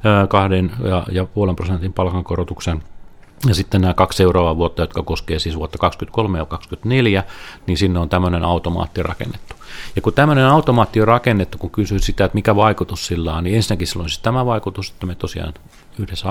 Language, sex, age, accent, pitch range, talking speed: Finnish, male, 40-59, native, 90-110 Hz, 175 wpm